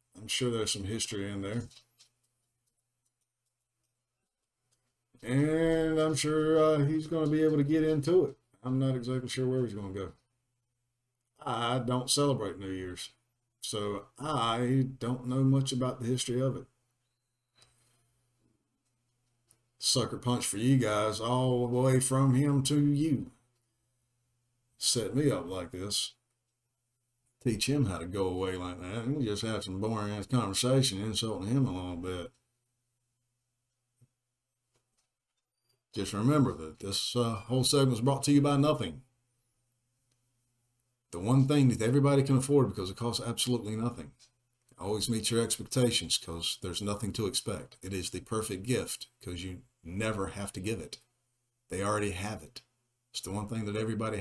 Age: 50-69